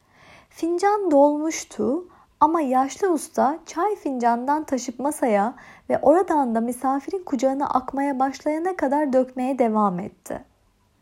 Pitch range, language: 235-310 Hz, Turkish